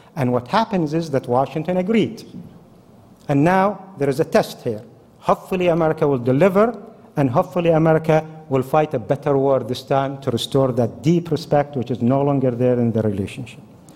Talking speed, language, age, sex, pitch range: 175 wpm, English, 50-69, male, 130-175 Hz